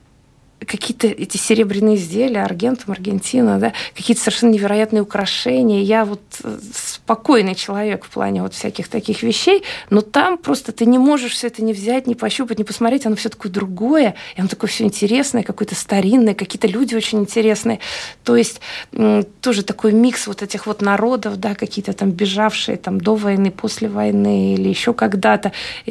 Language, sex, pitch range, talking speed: Russian, female, 185-235 Hz, 165 wpm